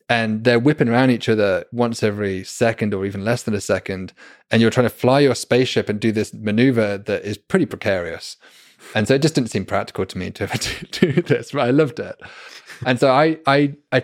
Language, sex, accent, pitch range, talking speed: English, male, British, 105-120 Hz, 220 wpm